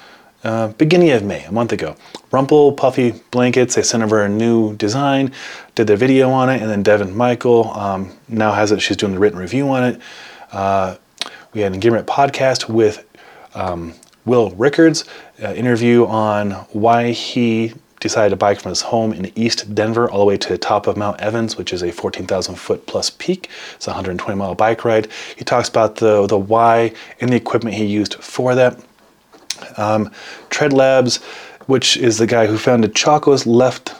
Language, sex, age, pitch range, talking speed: English, male, 30-49, 105-125 Hz, 185 wpm